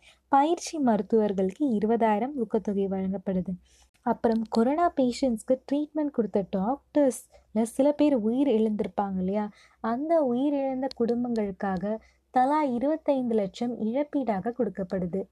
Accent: native